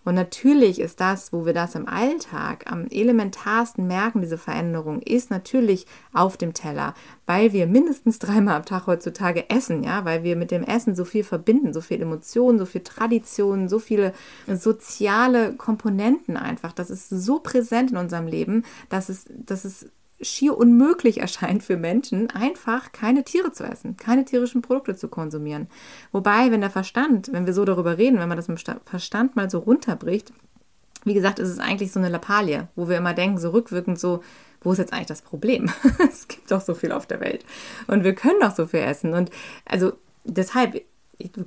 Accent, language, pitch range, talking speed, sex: German, German, 180-235 Hz, 190 wpm, female